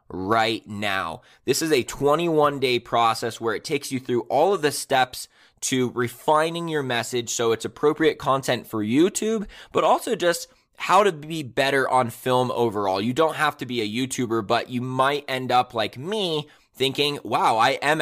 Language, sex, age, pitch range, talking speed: English, male, 20-39, 115-140 Hz, 180 wpm